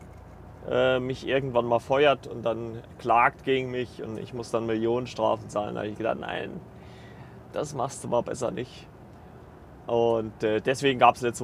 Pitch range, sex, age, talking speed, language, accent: 110-140 Hz, male, 30-49, 175 wpm, German, German